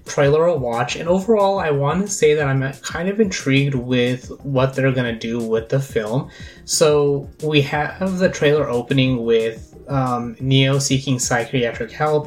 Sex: male